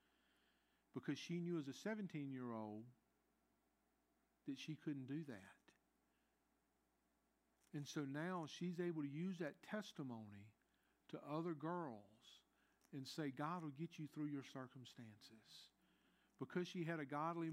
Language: English